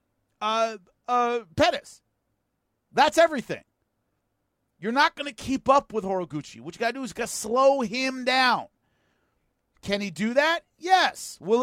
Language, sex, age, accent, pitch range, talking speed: English, male, 40-59, American, 170-260 Hz, 150 wpm